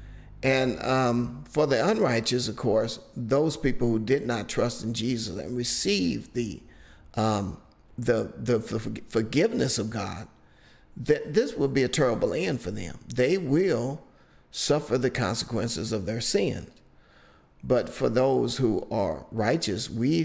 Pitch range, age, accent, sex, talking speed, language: 115-135 Hz, 50-69, American, male, 140 wpm, English